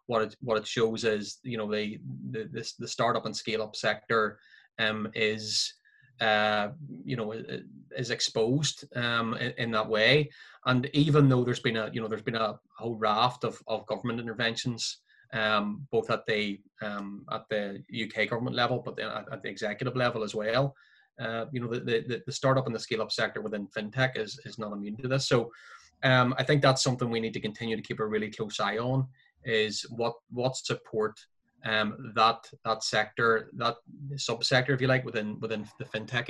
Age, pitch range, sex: 20-39, 110-130 Hz, male